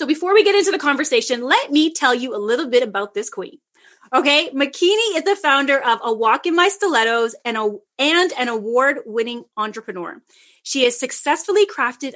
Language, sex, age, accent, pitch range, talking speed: English, female, 30-49, American, 235-335 Hz, 185 wpm